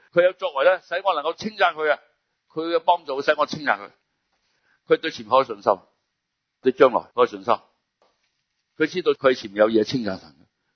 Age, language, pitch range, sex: 60-79, Chinese, 100-160 Hz, male